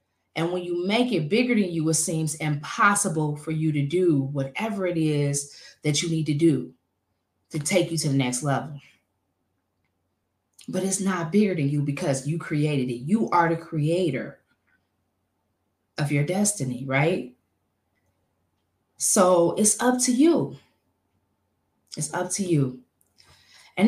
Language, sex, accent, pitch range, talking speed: English, female, American, 135-195 Hz, 145 wpm